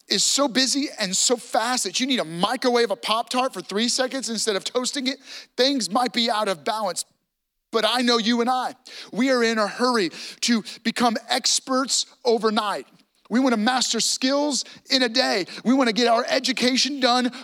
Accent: American